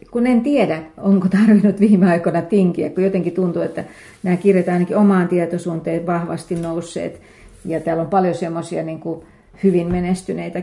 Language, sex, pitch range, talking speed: Finnish, female, 165-190 Hz, 150 wpm